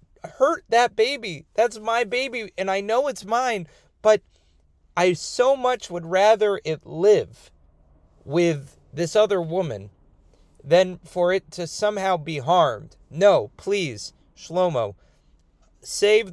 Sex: male